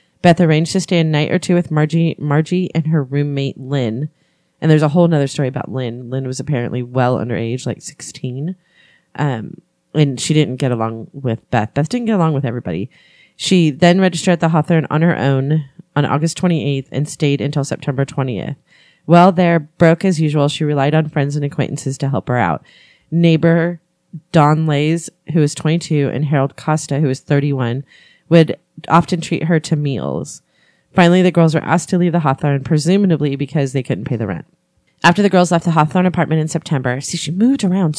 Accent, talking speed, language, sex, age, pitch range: American, 195 wpm, English, female, 30-49, 140-170 Hz